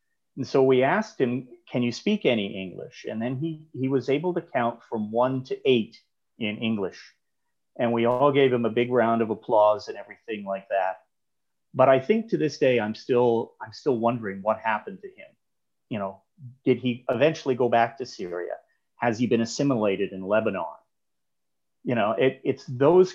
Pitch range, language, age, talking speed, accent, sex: 105-130 Hz, English, 40-59, 190 wpm, American, male